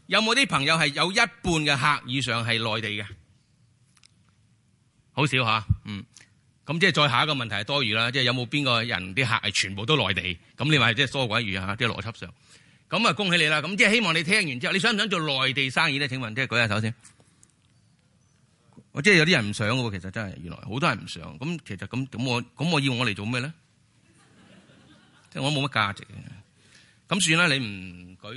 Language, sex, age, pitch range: Chinese, male, 30-49, 110-155 Hz